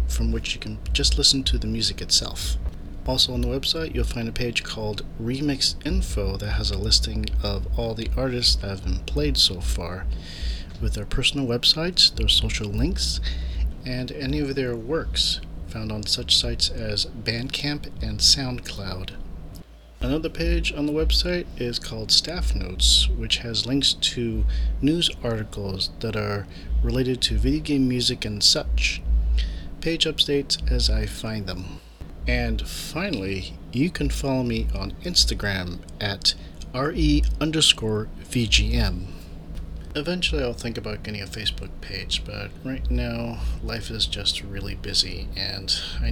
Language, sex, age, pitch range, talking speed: English, male, 40-59, 80-120 Hz, 145 wpm